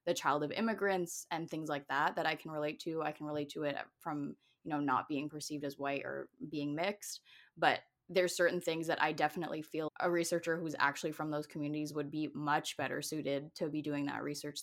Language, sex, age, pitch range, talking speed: English, female, 20-39, 150-185 Hz, 220 wpm